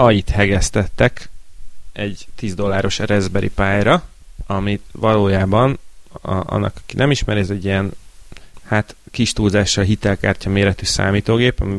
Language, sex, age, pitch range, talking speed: Hungarian, male, 30-49, 90-105 Hz, 105 wpm